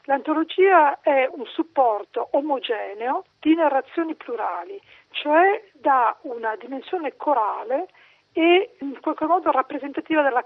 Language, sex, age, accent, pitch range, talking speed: Italian, female, 40-59, native, 245-370 Hz, 110 wpm